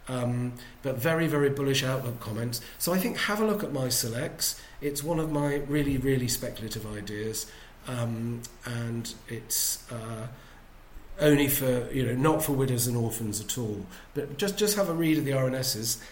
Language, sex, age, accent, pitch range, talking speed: English, male, 40-59, British, 120-145 Hz, 180 wpm